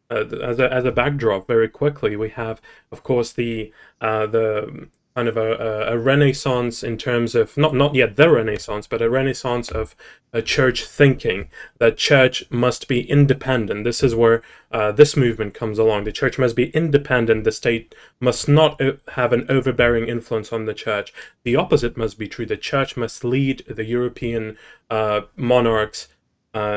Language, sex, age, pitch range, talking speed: English, male, 20-39, 115-135 Hz, 180 wpm